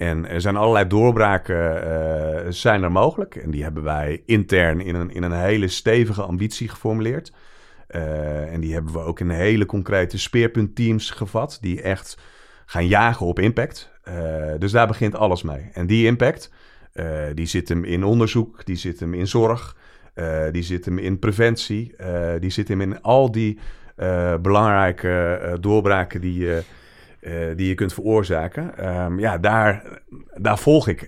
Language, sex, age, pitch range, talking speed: Dutch, male, 40-59, 85-110 Hz, 170 wpm